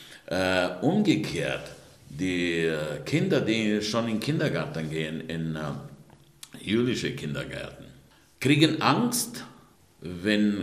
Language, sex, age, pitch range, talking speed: German, male, 60-79, 90-115 Hz, 80 wpm